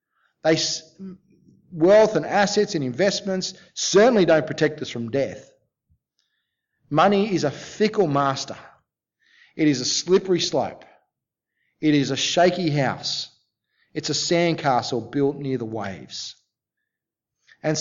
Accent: Australian